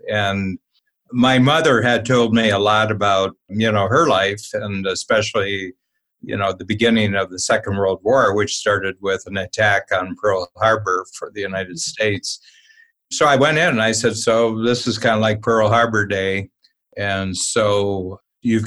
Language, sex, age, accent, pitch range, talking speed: English, male, 60-79, American, 100-115 Hz, 175 wpm